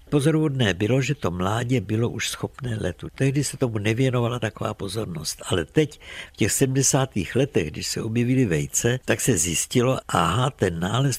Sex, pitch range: male, 95-125 Hz